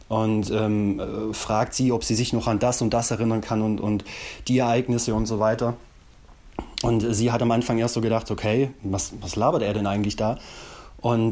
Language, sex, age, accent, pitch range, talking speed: German, male, 30-49, German, 110-125 Hz, 200 wpm